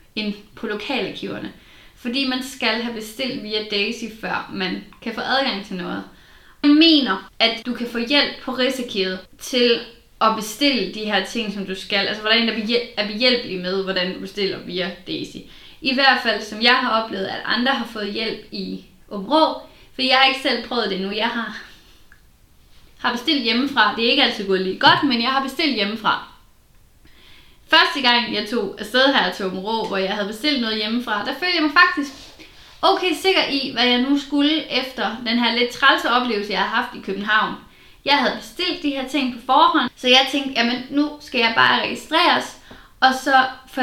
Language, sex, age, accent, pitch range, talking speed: Danish, female, 20-39, native, 215-275 Hz, 195 wpm